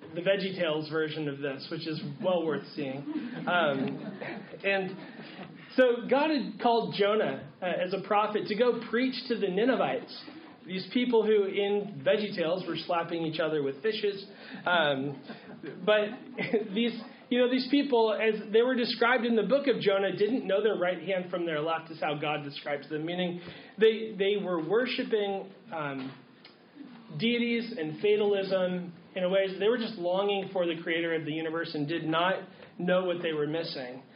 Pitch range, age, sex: 175-225 Hz, 30-49, male